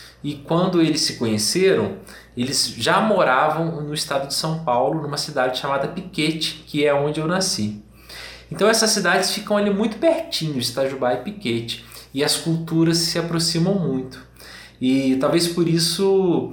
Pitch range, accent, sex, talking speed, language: 125-170 Hz, Brazilian, male, 155 wpm, Portuguese